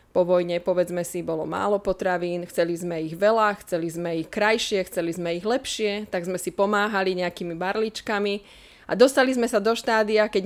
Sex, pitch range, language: female, 175-210 Hz, Slovak